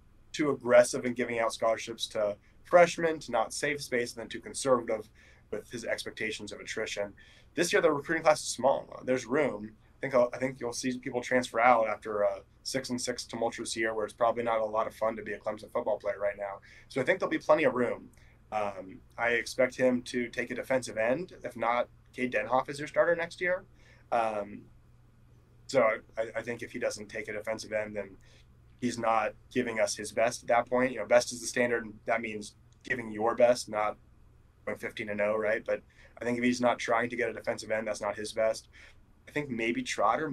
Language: English